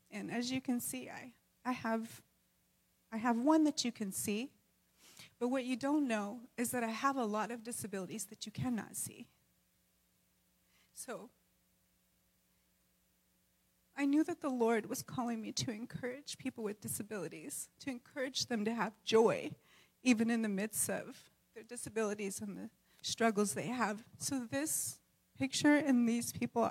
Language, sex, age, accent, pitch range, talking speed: English, female, 30-49, American, 195-245 Hz, 155 wpm